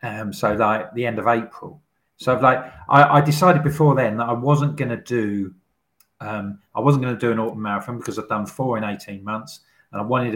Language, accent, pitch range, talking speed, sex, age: English, British, 120-155 Hz, 215 wpm, male, 40-59